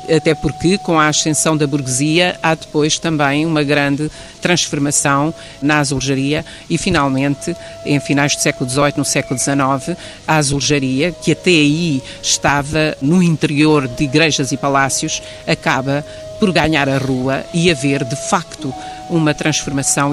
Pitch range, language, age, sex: 140-170 Hz, Portuguese, 50-69, female